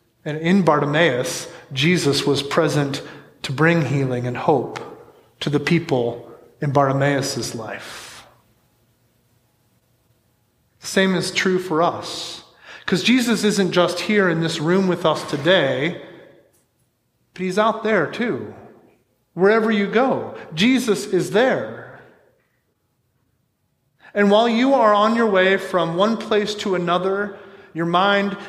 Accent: American